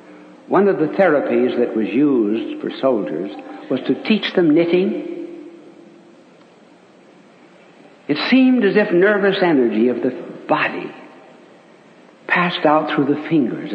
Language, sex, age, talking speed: English, male, 60-79, 120 wpm